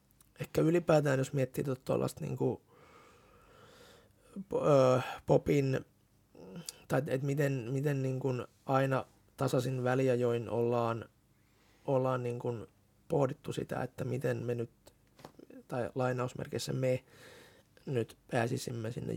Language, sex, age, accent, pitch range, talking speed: Finnish, male, 20-39, native, 125-140 Hz, 100 wpm